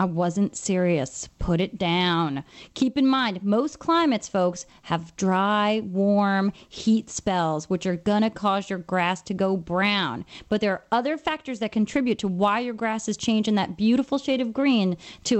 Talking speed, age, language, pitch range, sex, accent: 175 wpm, 30-49, English, 195-265 Hz, female, American